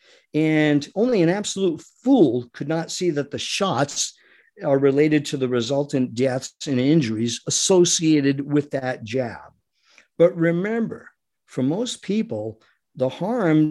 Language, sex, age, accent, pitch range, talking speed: English, male, 50-69, American, 135-210 Hz, 130 wpm